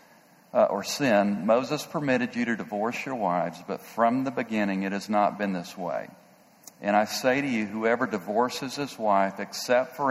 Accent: American